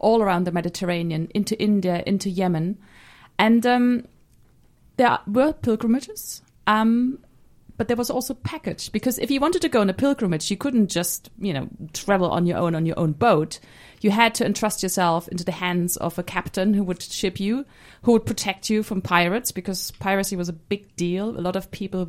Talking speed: 195 wpm